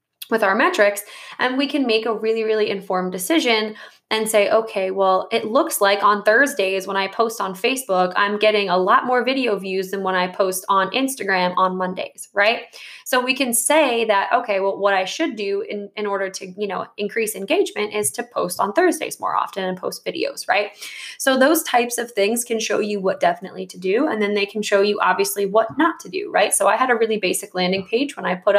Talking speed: 225 wpm